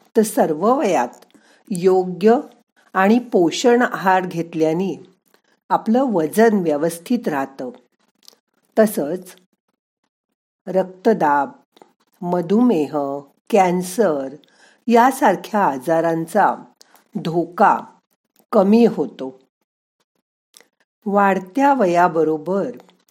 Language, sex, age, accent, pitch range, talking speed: Marathi, female, 50-69, native, 165-230 Hz, 60 wpm